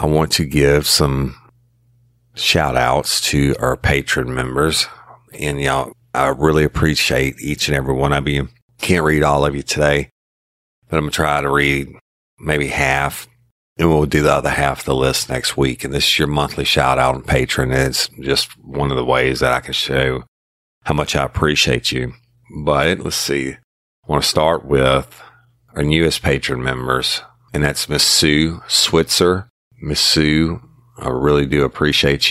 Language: English